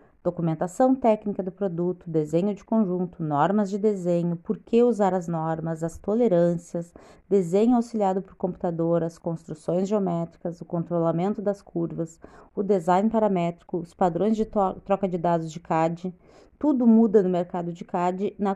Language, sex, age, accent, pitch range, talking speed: Portuguese, female, 30-49, Brazilian, 180-220 Hz, 150 wpm